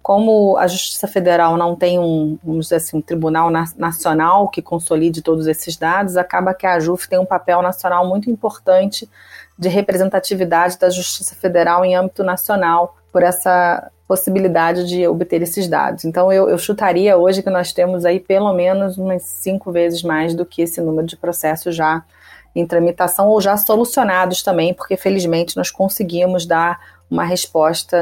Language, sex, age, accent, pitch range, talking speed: Portuguese, female, 30-49, Brazilian, 170-200 Hz, 160 wpm